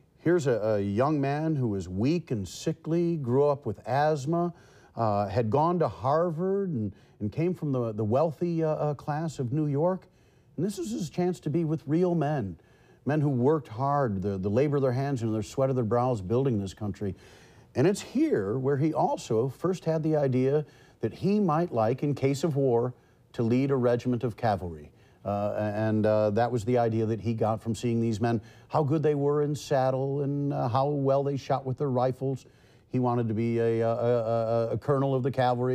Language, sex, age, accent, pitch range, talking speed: English, male, 50-69, American, 115-145 Hz, 210 wpm